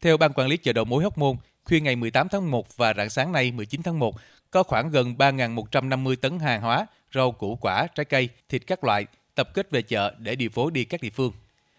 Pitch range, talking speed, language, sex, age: 115-140 Hz, 240 wpm, Vietnamese, male, 20-39